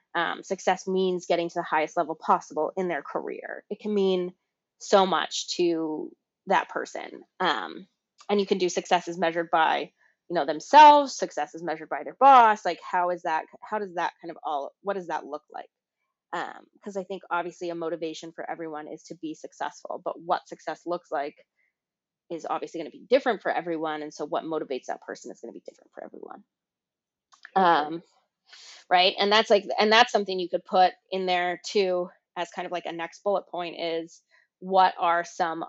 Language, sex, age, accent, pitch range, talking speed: English, female, 20-39, American, 170-205 Hz, 200 wpm